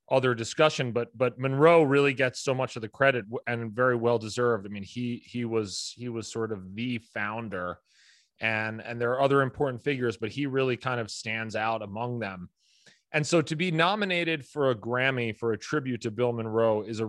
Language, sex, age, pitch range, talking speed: English, male, 30-49, 115-140 Hz, 205 wpm